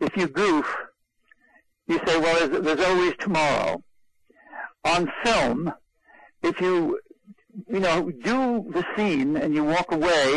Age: 60-79